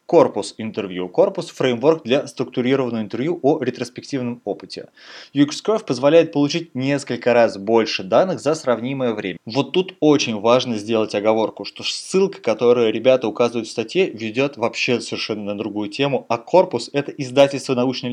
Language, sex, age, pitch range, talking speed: Russian, male, 20-39, 115-145 Hz, 145 wpm